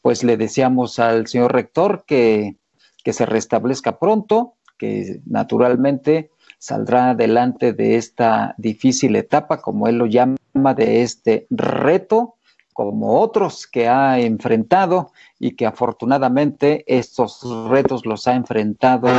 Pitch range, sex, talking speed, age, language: 120-170 Hz, male, 120 wpm, 50-69, Spanish